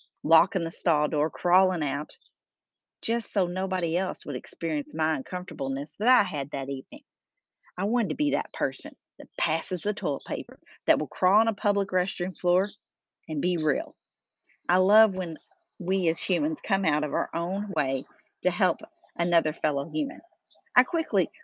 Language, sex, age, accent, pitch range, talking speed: English, female, 40-59, American, 170-240 Hz, 170 wpm